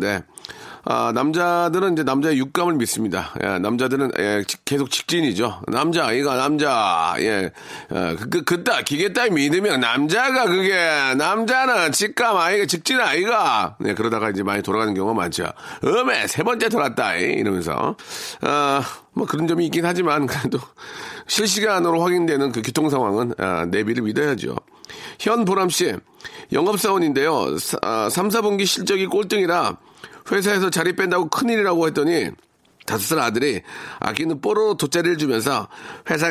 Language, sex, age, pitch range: Korean, male, 40-59, 110-180 Hz